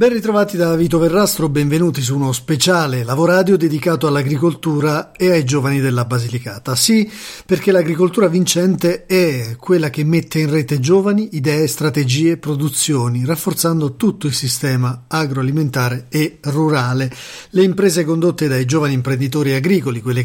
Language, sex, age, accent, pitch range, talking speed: Italian, male, 40-59, native, 135-170 Hz, 135 wpm